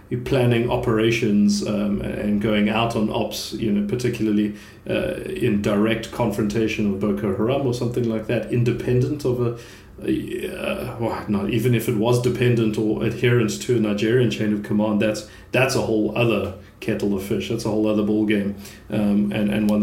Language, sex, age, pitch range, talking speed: English, male, 30-49, 105-125 Hz, 180 wpm